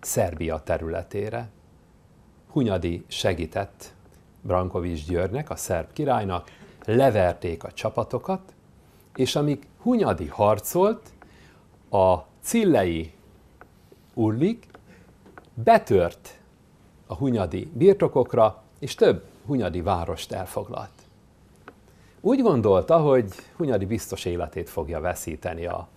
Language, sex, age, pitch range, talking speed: Hungarian, male, 60-79, 90-145 Hz, 85 wpm